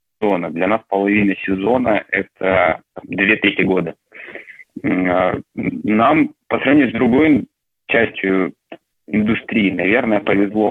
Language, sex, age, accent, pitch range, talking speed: Russian, male, 30-49, native, 95-110 Hz, 95 wpm